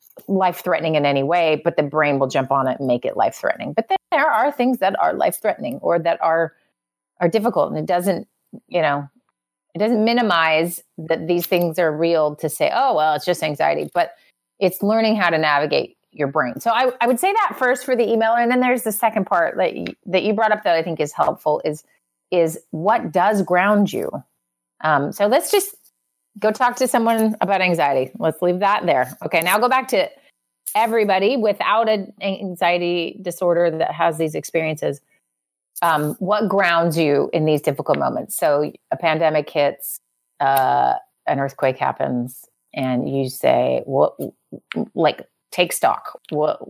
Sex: female